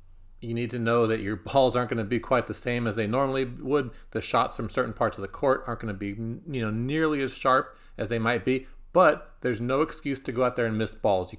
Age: 40-59